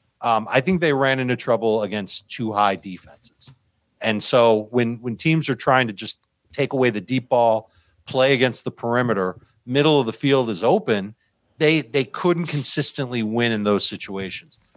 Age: 40-59